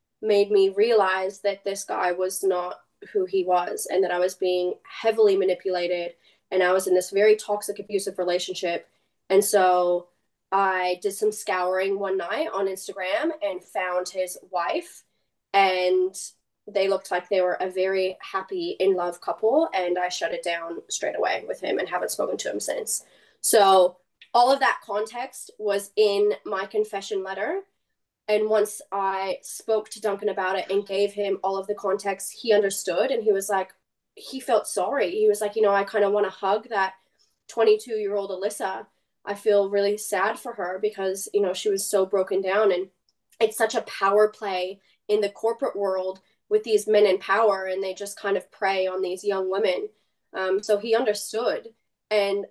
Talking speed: 185 wpm